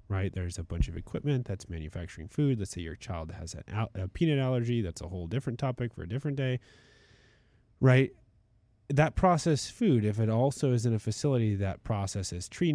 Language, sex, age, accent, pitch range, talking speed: English, male, 30-49, American, 90-115 Hz, 190 wpm